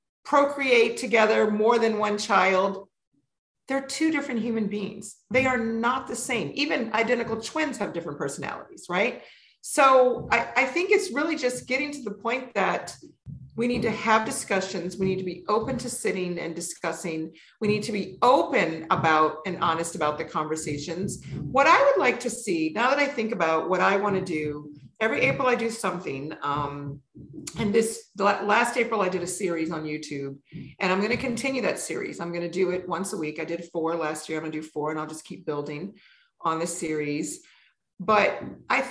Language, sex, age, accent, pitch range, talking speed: English, female, 50-69, American, 165-235 Hz, 190 wpm